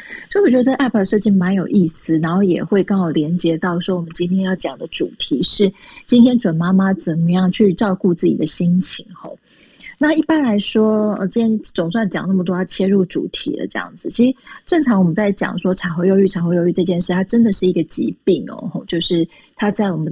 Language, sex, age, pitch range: Chinese, female, 20-39, 175-215 Hz